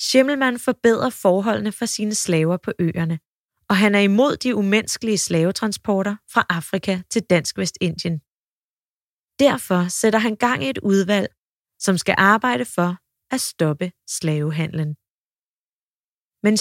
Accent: native